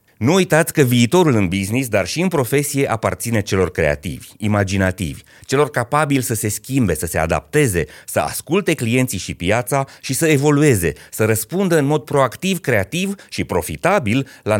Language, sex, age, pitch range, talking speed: Romanian, male, 30-49, 100-140 Hz, 160 wpm